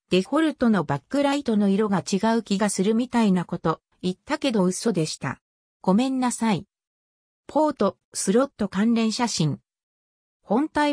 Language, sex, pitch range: Japanese, female, 185-260 Hz